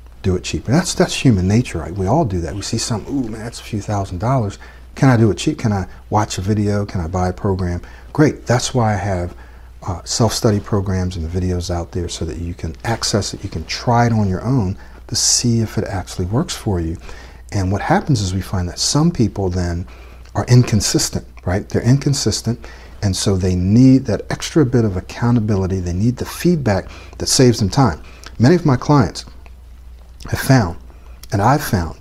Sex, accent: male, American